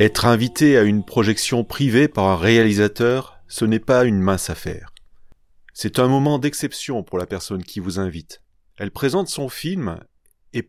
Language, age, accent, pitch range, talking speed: French, 30-49, French, 90-125 Hz, 170 wpm